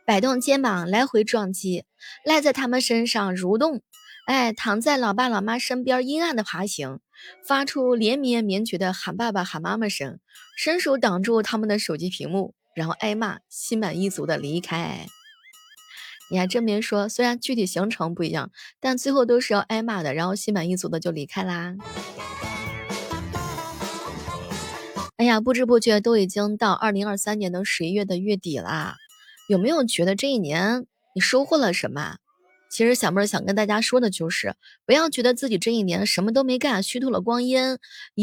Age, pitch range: 20-39, 195-265 Hz